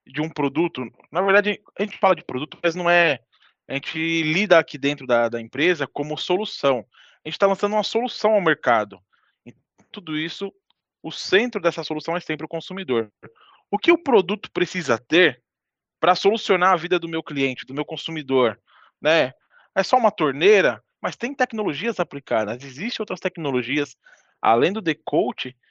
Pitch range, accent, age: 135-180 Hz, Brazilian, 20-39